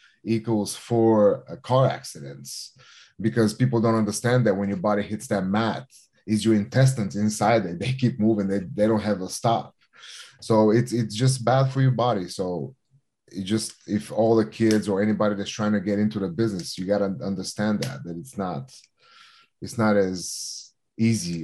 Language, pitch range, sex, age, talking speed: English, 100-120 Hz, male, 30-49, 185 wpm